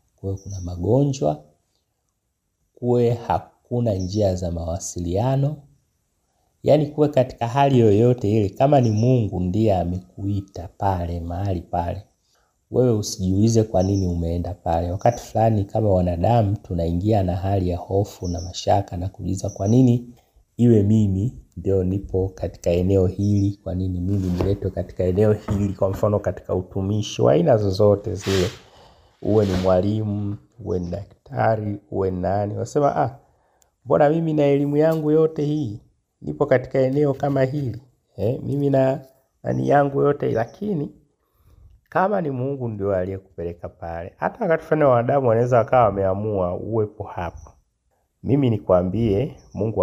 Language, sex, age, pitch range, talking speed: Swahili, male, 30-49, 90-120 Hz, 130 wpm